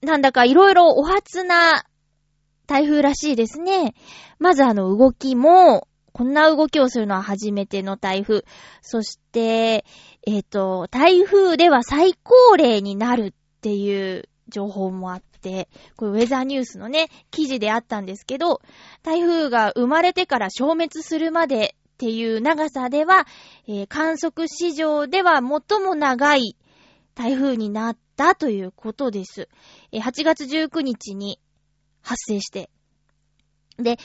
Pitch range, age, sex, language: 210-320 Hz, 20-39, female, Japanese